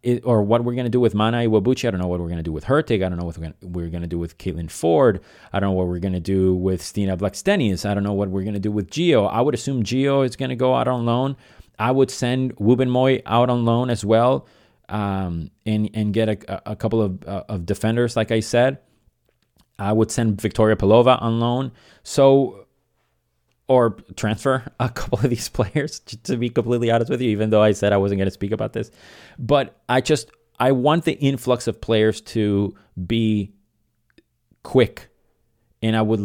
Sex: male